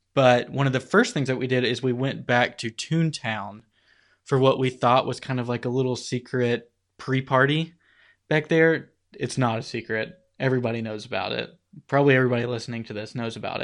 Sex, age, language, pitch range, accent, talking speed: male, 20-39, English, 115-135 Hz, American, 195 wpm